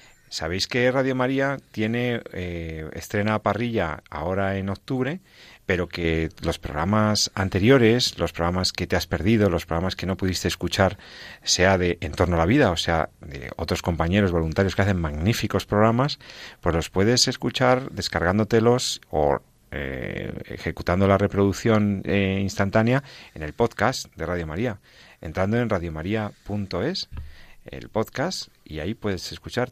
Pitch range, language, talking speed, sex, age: 90-115 Hz, Spanish, 145 wpm, male, 40-59